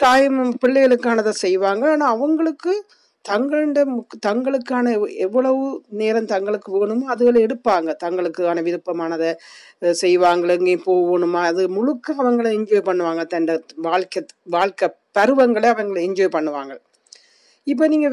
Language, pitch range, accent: Tamil, 195-265 Hz, native